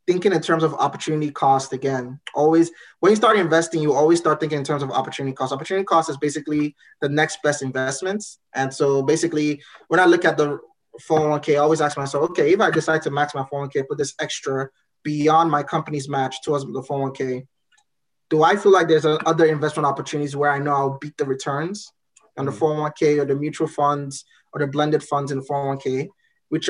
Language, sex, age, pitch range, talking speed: English, male, 20-39, 135-160 Hz, 200 wpm